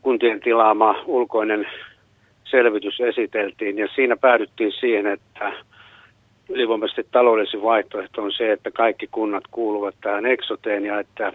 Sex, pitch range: male, 110-130 Hz